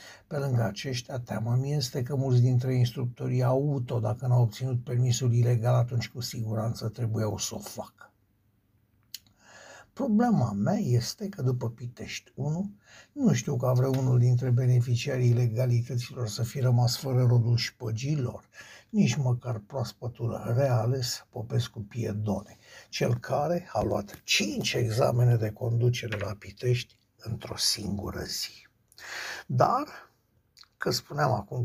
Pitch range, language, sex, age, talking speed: 110-130 Hz, Romanian, male, 60-79, 130 wpm